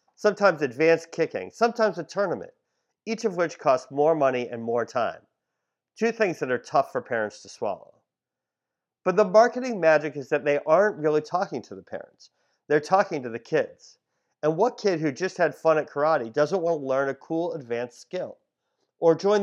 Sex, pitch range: male, 150-200 Hz